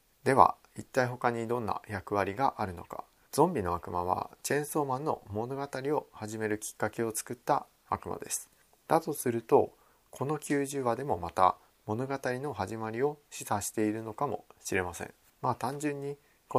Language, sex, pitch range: Japanese, male, 100-130 Hz